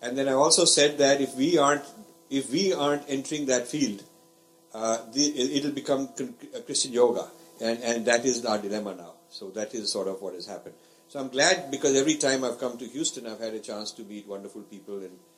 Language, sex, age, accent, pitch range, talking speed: English, male, 50-69, Indian, 105-145 Hz, 225 wpm